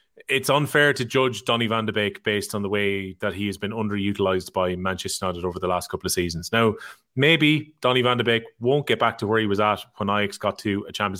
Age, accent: 30-49, Irish